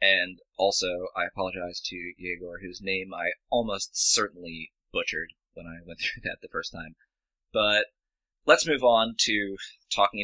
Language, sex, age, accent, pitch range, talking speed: English, male, 20-39, American, 95-115 Hz, 150 wpm